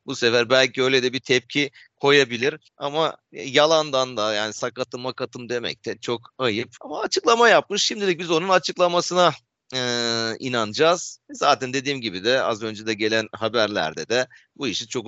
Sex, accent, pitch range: male, native, 110-145 Hz